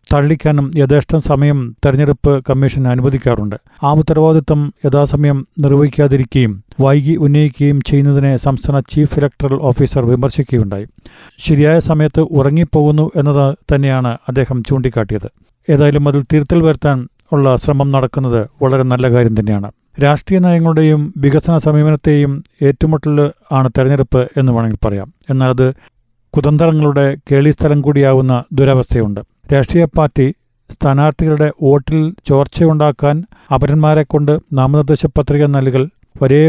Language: Malayalam